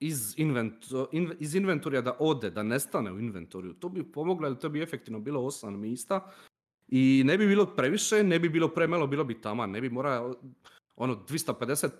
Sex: male